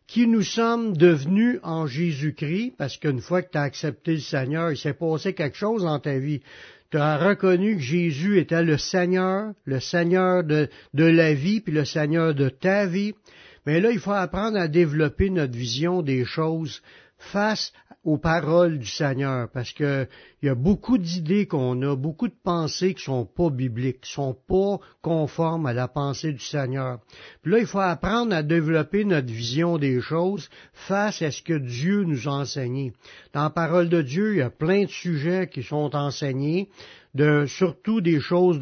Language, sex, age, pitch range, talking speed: French, male, 60-79, 145-185 Hz, 190 wpm